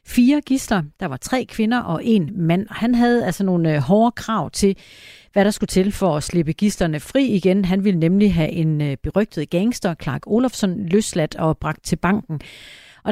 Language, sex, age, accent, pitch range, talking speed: Danish, female, 40-59, native, 170-220 Hz, 190 wpm